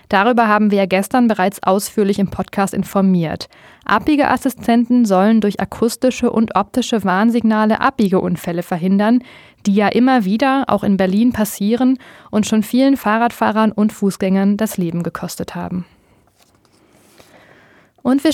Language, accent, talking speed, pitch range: German, German, 130 wpm, 190-235 Hz